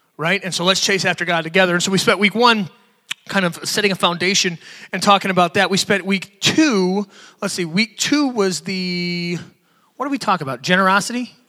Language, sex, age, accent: English, male, 30-49, American